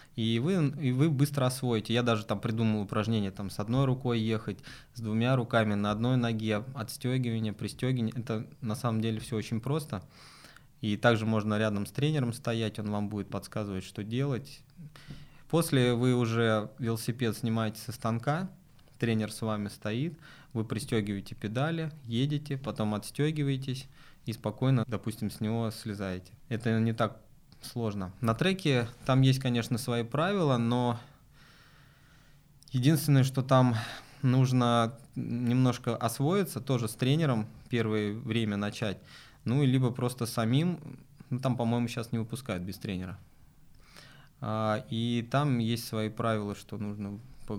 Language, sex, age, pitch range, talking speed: Russian, male, 20-39, 110-135 Hz, 140 wpm